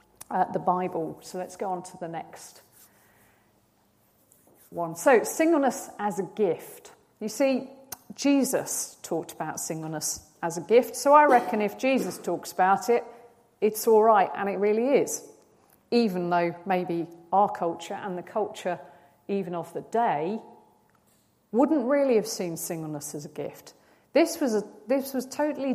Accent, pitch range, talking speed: British, 185-250 Hz, 155 wpm